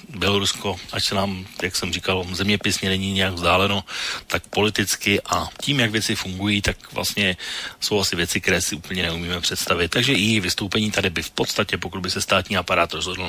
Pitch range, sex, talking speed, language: 90-110 Hz, male, 185 wpm, Slovak